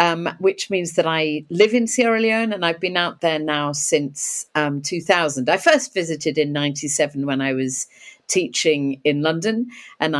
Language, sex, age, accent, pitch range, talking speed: English, female, 50-69, British, 150-195 Hz, 175 wpm